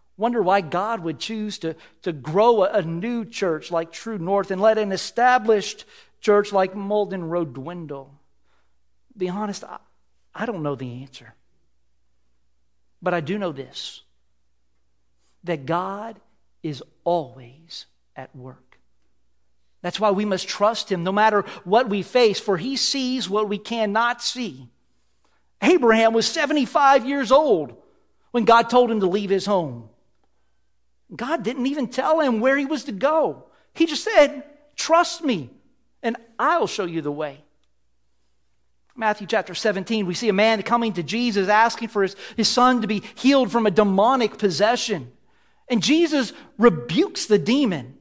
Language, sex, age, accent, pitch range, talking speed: English, male, 50-69, American, 160-240 Hz, 150 wpm